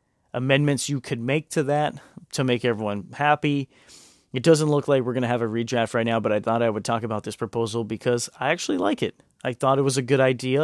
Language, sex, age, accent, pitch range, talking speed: English, male, 30-49, American, 115-135 Hz, 245 wpm